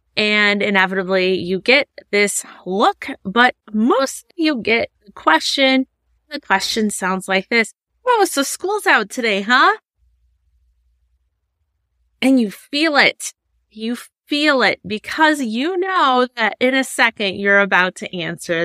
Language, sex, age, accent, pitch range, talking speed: English, female, 30-49, American, 190-265 Hz, 130 wpm